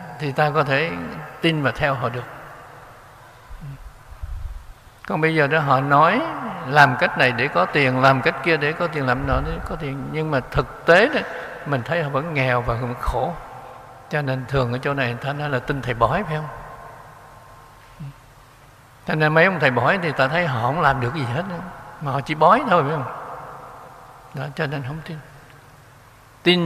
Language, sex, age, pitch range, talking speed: Vietnamese, male, 60-79, 125-155 Hz, 195 wpm